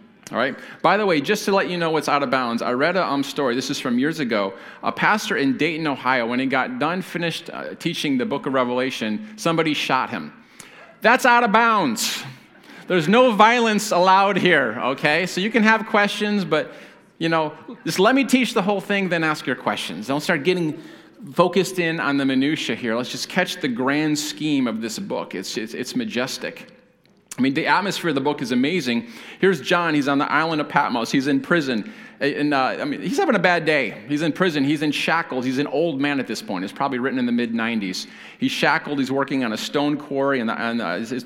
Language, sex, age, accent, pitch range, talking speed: English, male, 40-59, American, 135-205 Hz, 225 wpm